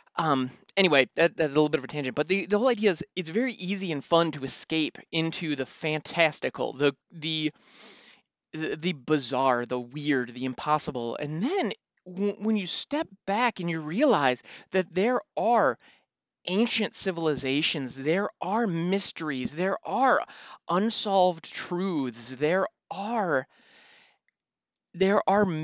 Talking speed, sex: 135 wpm, male